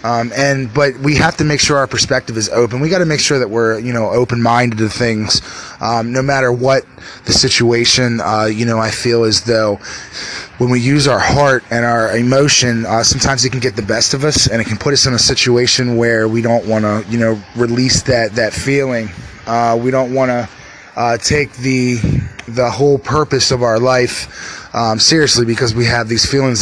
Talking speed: 210 wpm